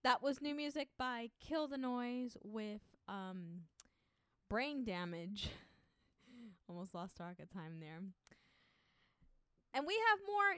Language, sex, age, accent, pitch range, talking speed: English, female, 10-29, American, 195-260 Hz, 130 wpm